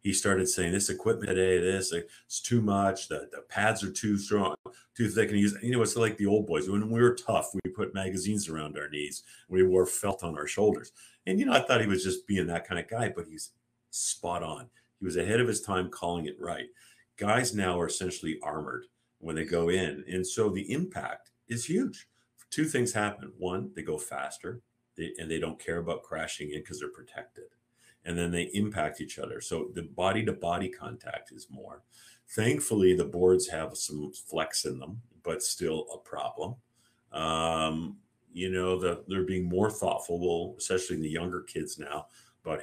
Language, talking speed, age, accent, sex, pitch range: English, 200 wpm, 50-69, American, male, 80-105 Hz